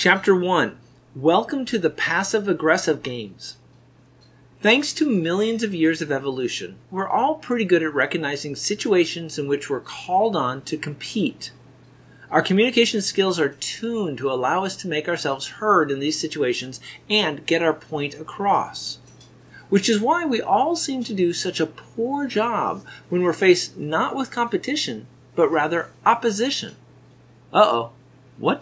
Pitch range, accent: 150-210 Hz, American